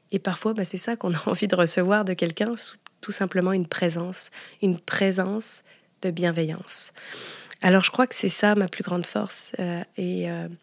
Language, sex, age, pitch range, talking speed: French, female, 20-39, 180-220 Hz, 185 wpm